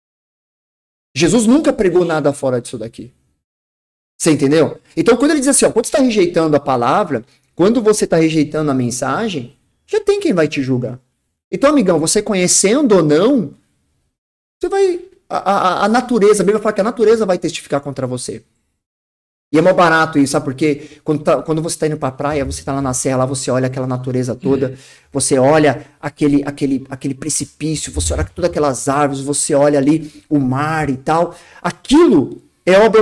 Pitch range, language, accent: 140-215 Hz, Portuguese, Brazilian